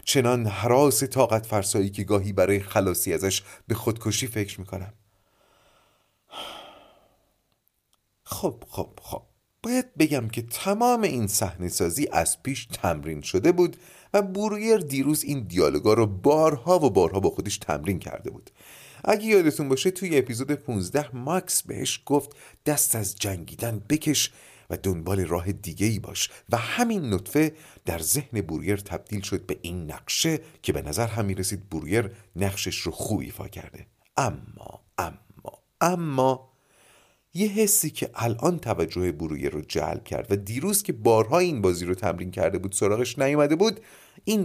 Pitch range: 100-150 Hz